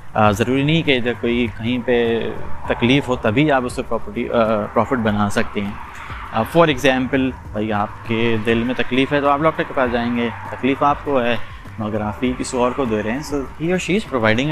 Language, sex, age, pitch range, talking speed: Urdu, male, 30-49, 105-135 Hz, 200 wpm